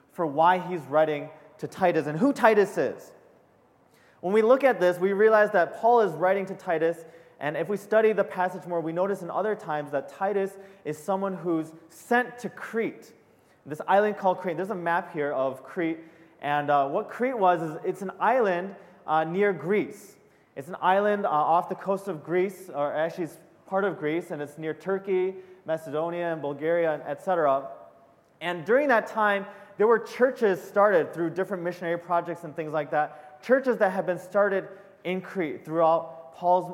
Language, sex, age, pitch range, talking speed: English, male, 30-49, 165-205 Hz, 185 wpm